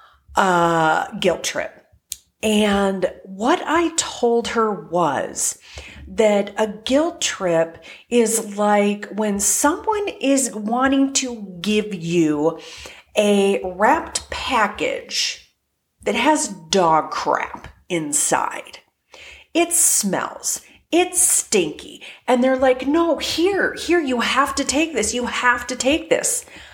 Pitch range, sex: 195-275 Hz, female